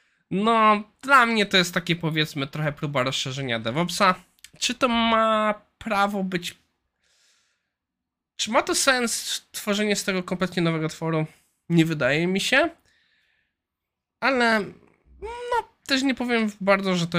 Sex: male